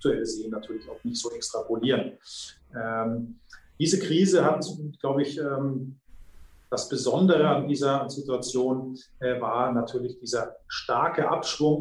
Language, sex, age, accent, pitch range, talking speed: German, male, 30-49, German, 125-160 Hz, 120 wpm